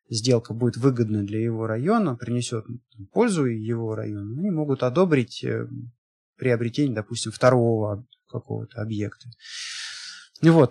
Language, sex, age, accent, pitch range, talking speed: Russian, male, 20-39, native, 120-170 Hz, 105 wpm